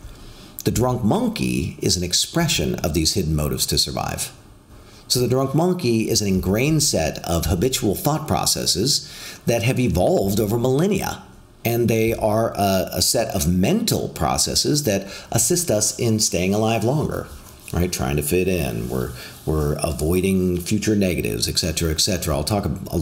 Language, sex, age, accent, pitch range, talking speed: English, male, 40-59, American, 90-120 Hz, 155 wpm